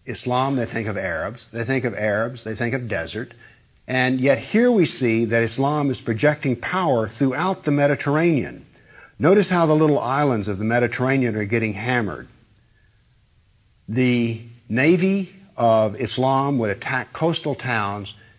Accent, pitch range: American, 110-140 Hz